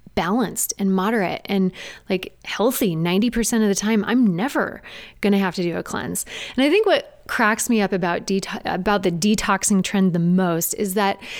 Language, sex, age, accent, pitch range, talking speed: English, female, 20-39, American, 185-245 Hz, 190 wpm